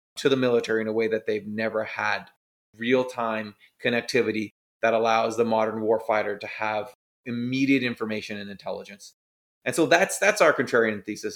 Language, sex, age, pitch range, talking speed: English, male, 30-49, 105-120 Hz, 160 wpm